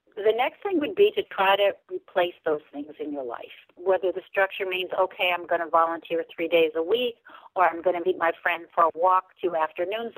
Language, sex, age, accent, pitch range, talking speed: English, female, 60-79, American, 170-245 Hz, 230 wpm